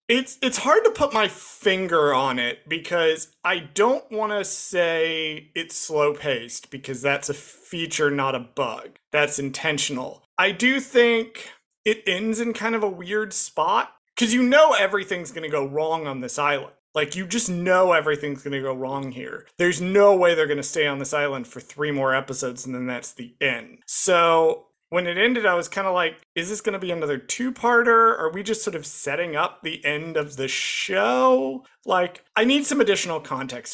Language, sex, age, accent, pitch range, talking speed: English, male, 30-49, American, 140-205 Hz, 200 wpm